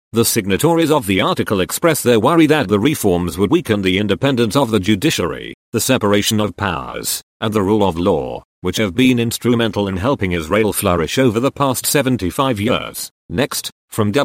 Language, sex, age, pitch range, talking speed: English, male, 40-59, 100-130 Hz, 175 wpm